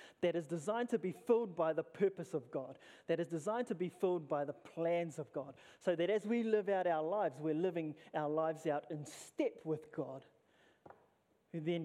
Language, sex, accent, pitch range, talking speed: English, male, Australian, 145-170 Hz, 210 wpm